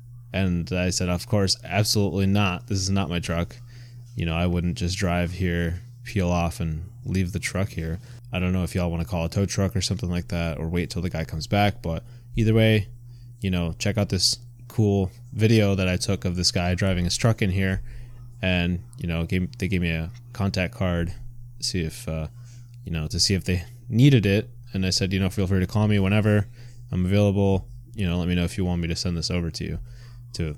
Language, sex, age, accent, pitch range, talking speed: English, male, 20-39, American, 90-120 Hz, 235 wpm